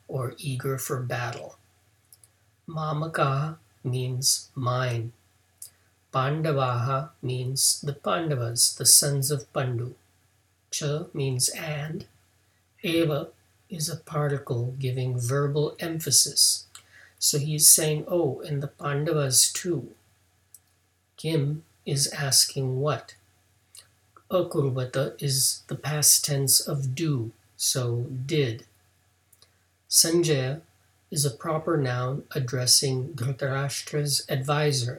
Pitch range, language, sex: 115-150 Hz, English, male